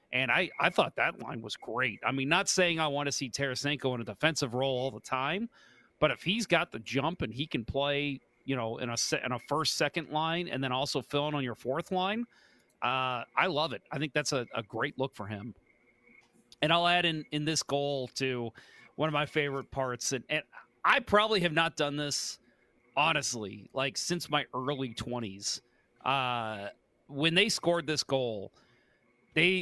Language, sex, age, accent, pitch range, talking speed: English, male, 30-49, American, 130-165 Hz, 200 wpm